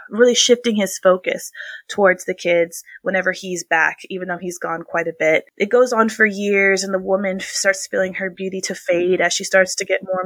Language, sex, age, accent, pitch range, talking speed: English, female, 20-39, American, 175-195 Hz, 215 wpm